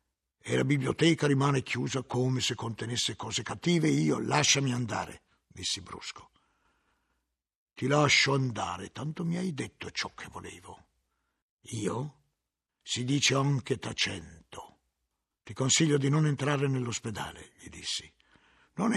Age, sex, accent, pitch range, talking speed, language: 60-79, male, native, 100-135 Hz, 125 wpm, Italian